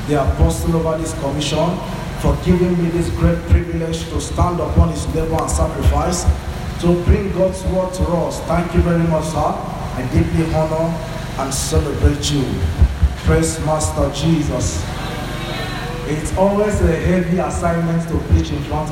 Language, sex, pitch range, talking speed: English, male, 135-185 Hz, 150 wpm